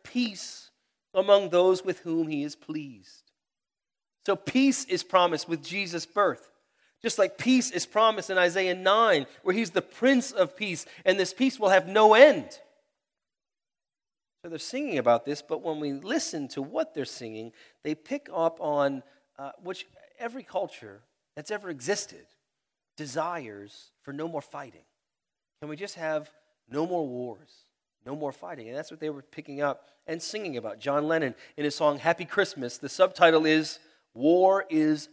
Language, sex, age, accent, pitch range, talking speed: English, male, 40-59, American, 145-190 Hz, 165 wpm